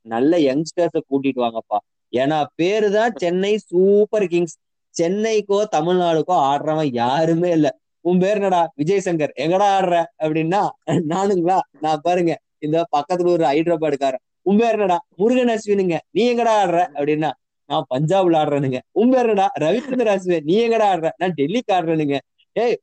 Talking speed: 135 wpm